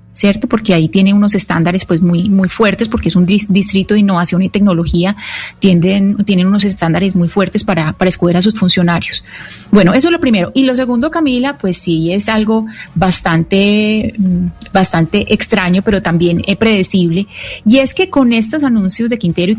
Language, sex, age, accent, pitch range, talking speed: Spanish, female, 30-49, Colombian, 180-215 Hz, 180 wpm